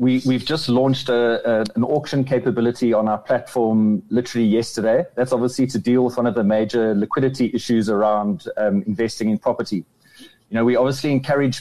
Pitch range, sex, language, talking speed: 110-130 Hz, male, English, 165 wpm